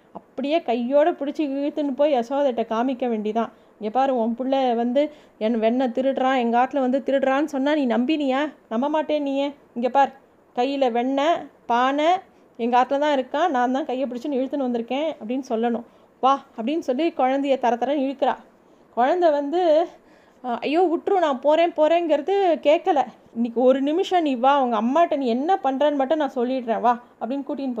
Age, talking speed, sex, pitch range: 20-39, 160 wpm, female, 240-295 Hz